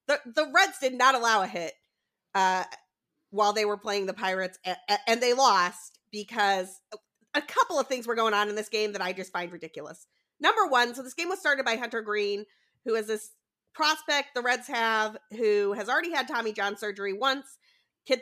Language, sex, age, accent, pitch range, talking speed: English, female, 30-49, American, 205-275 Hz, 205 wpm